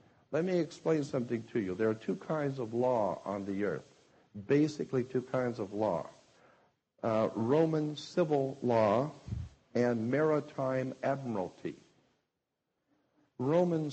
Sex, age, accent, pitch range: male, 60-79, American, 110-135 Hz